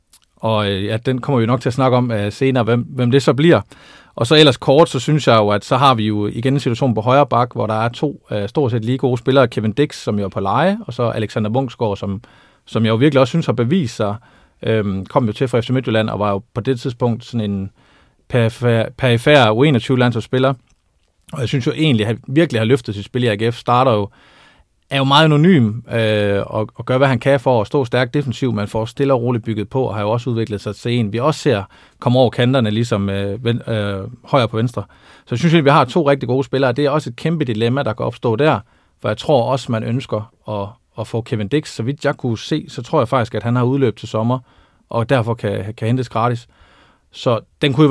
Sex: male